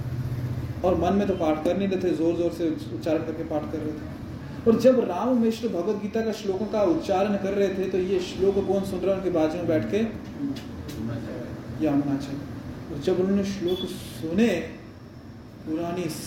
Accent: native